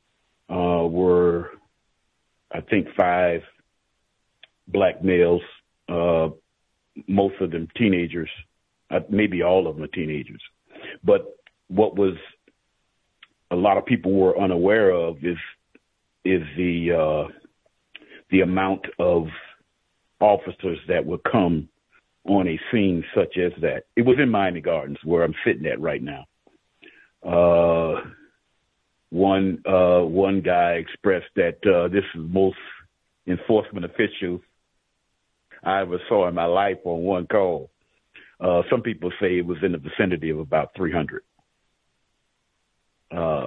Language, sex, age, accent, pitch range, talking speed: English, male, 50-69, American, 85-95 Hz, 125 wpm